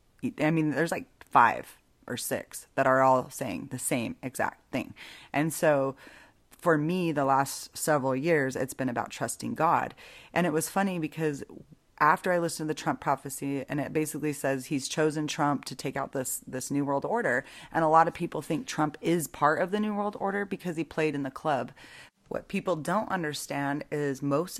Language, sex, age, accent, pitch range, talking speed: English, female, 30-49, American, 135-155 Hz, 200 wpm